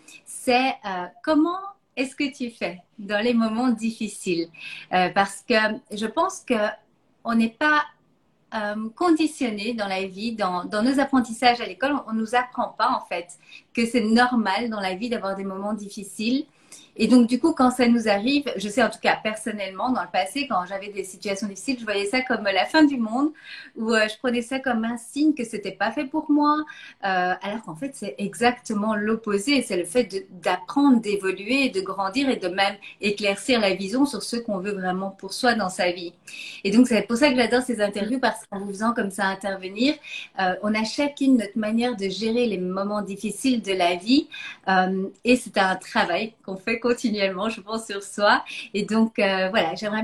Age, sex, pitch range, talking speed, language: 30-49, female, 195-255 Hz, 205 wpm, French